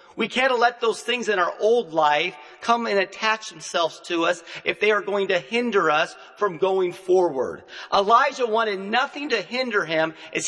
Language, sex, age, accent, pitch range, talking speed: English, male, 40-59, American, 170-230 Hz, 185 wpm